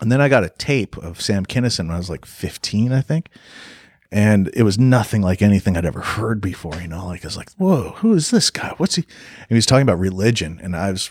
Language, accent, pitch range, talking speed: English, American, 90-110 Hz, 260 wpm